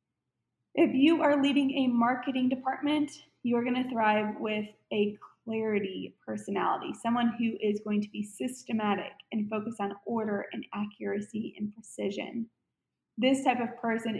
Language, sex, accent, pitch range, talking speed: English, female, American, 210-240 Hz, 145 wpm